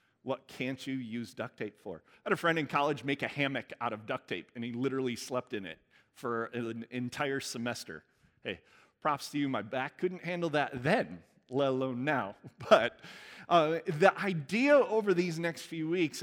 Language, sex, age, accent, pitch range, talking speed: English, male, 30-49, American, 135-200 Hz, 190 wpm